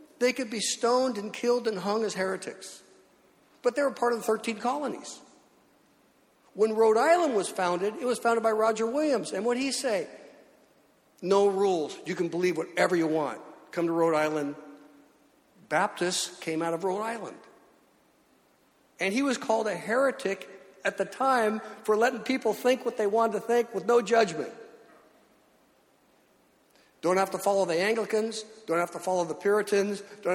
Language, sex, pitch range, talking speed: English, male, 185-240 Hz, 170 wpm